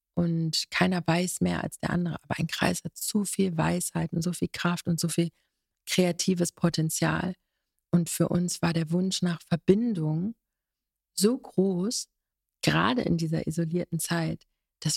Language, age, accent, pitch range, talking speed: German, 40-59, German, 165-190 Hz, 155 wpm